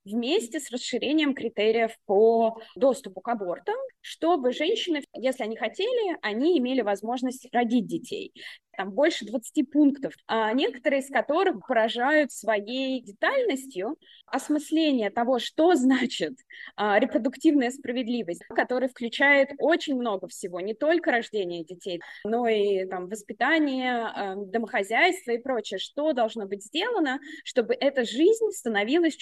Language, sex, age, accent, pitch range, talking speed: Russian, female, 20-39, native, 220-300 Hz, 115 wpm